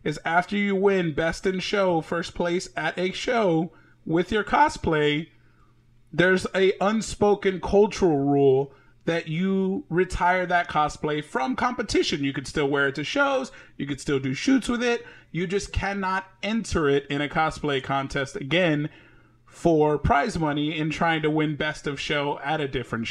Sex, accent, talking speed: male, American, 165 wpm